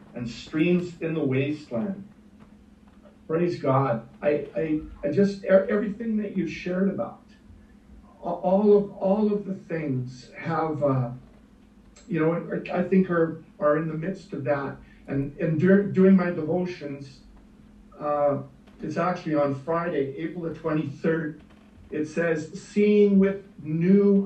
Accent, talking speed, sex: American, 135 wpm, male